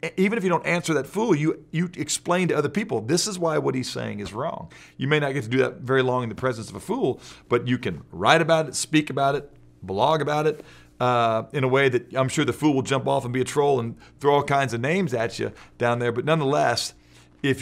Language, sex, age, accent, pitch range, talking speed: English, male, 40-59, American, 100-145 Hz, 260 wpm